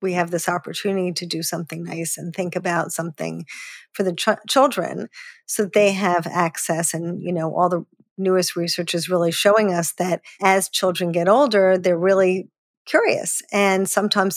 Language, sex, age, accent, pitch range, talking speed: English, female, 40-59, American, 175-205 Hz, 175 wpm